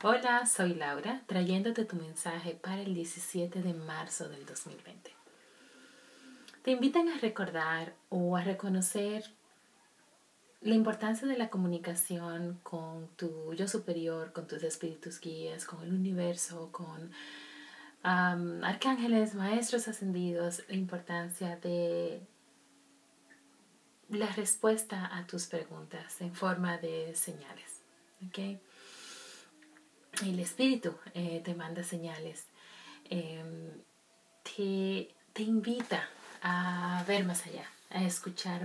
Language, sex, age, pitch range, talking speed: Spanish, female, 30-49, 170-210 Hz, 105 wpm